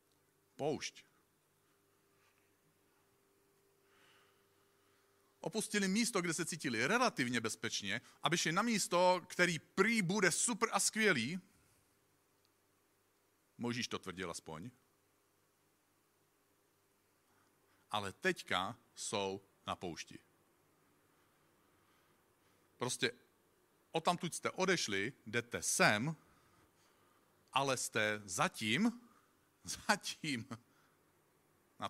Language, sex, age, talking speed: Czech, male, 50-69, 70 wpm